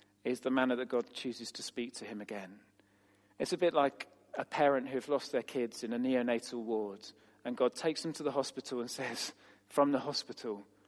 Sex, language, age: male, English, 40-59